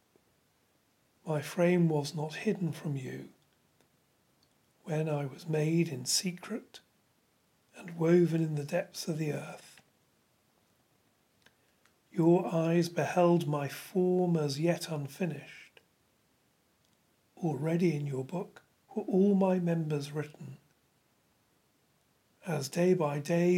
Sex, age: male, 40-59